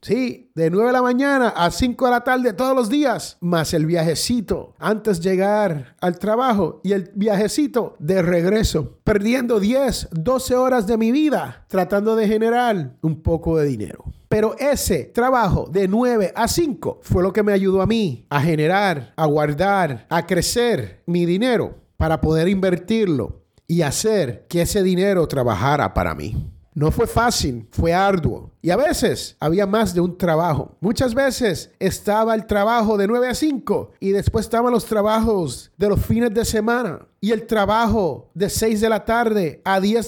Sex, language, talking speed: male, Spanish, 175 wpm